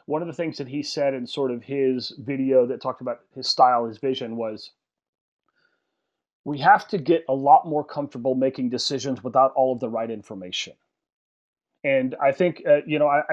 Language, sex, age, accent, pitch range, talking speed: English, male, 30-49, American, 130-165 Hz, 195 wpm